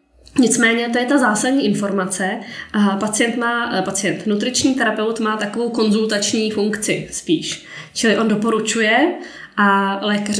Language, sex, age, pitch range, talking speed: Czech, female, 20-39, 195-215 Hz, 120 wpm